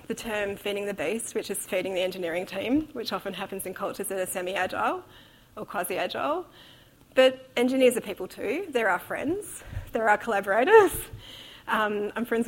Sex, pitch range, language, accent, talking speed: female, 205-280 Hz, English, Australian, 170 wpm